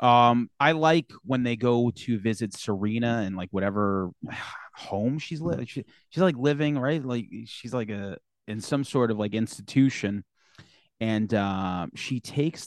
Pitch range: 105-140 Hz